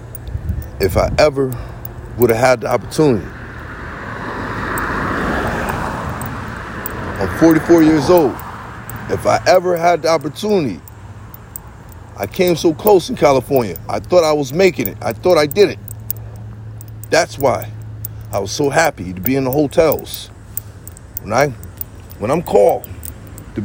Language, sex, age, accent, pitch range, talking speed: English, male, 40-59, American, 90-135 Hz, 130 wpm